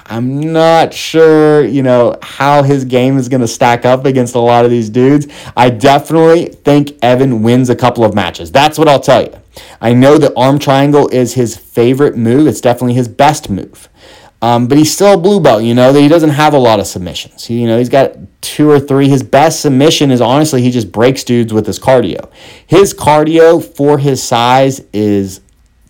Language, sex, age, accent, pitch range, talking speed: English, male, 30-49, American, 120-150 Hz, 210 wpm